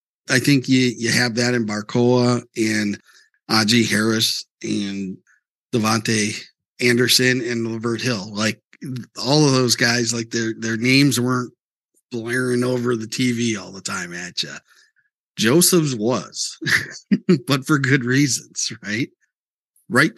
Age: 50-69